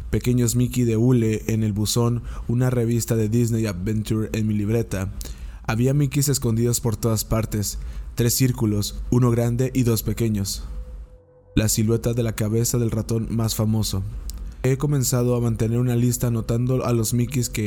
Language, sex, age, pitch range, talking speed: Spanish, male, 20-39, 105-120 Hz, 165 wpm